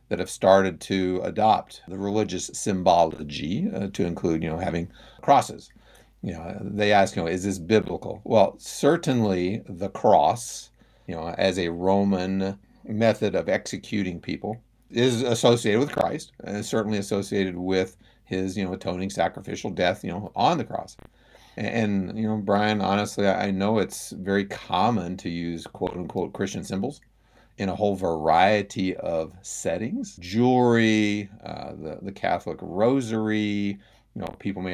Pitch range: 90-110 Hz